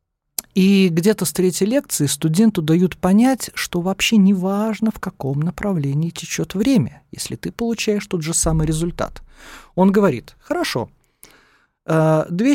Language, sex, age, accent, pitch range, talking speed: Russian, male, 40-59, native, 135-205 Hz, 135 wpm